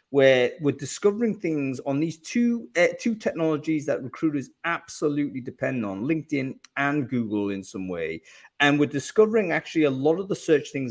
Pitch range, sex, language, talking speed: 120-155 Hz, male, English, 170 wpm